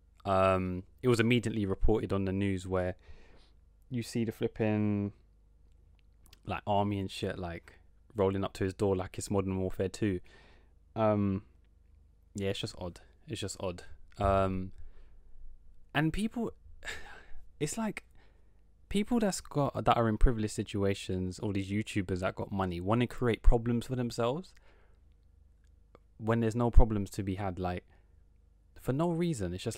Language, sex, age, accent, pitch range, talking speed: English, male, 20-39, British, 80-110 Hz, 150 wpm